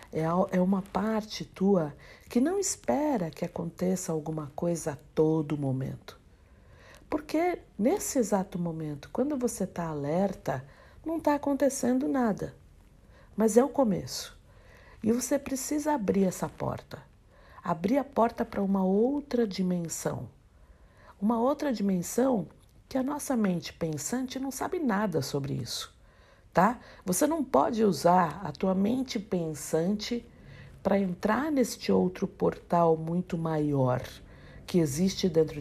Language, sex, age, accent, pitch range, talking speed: Portuguese, female, 60-79, Brazilian, 160-235 Hz, 125 wpm